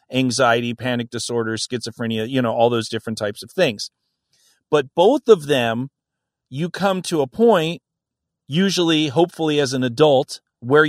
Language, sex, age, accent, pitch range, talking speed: English, male, 40-59, American, 130-170 Hz, 150 wpm